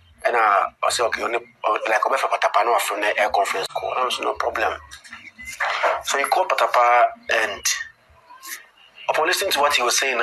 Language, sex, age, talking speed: English, male, 30-49, 180 wpm